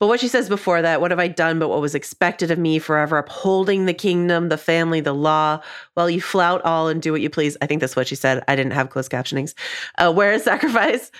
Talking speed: 255 wpm